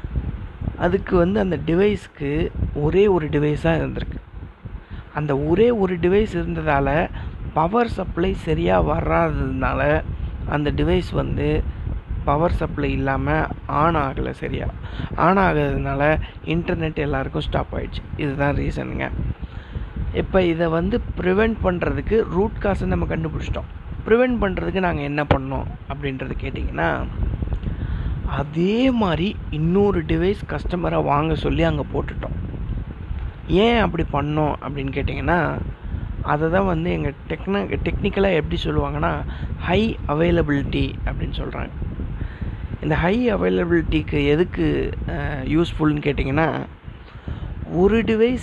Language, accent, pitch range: Tamil, native, 140-190 Hz